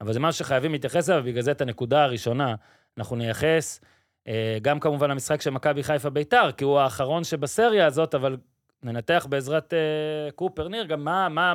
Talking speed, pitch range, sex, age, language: 155 wpm, 120-175 Hz, male, 30-49, Hebrew